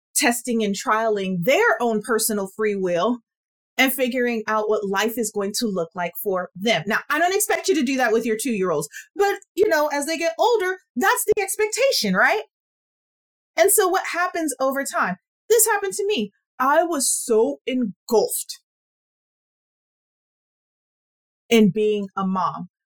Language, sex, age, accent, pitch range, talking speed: English, female, 30-49, American, 215-330 Hz, 160 wpm